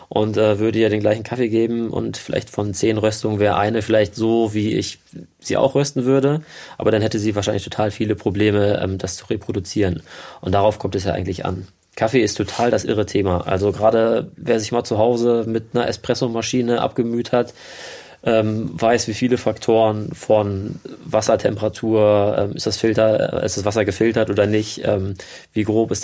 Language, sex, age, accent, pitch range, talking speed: German, male, 20-39, German, 105-120 Hz, 190 wpm